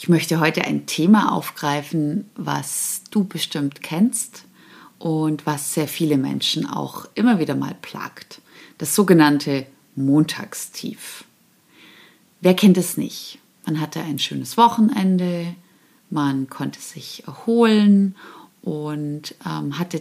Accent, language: German, German